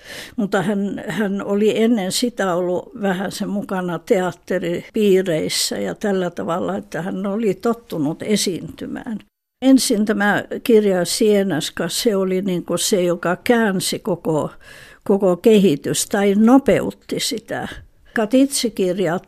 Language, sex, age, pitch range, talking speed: Finnish, female, 60-79, 185-230 Hz, 110 wpm